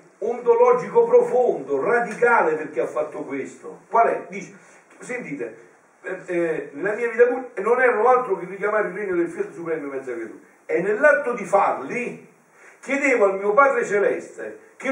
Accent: native